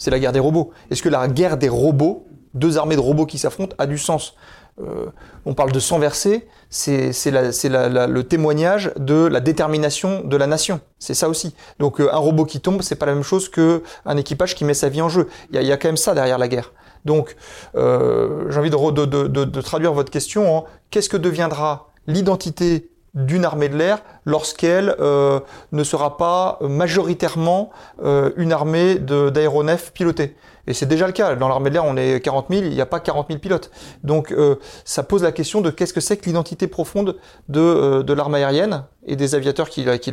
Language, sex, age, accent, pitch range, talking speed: French, male, 30-49, French, 140-170 Hz, 215 wpm